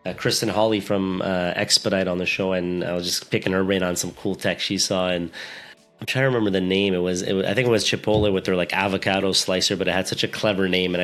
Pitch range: 95-110 Hz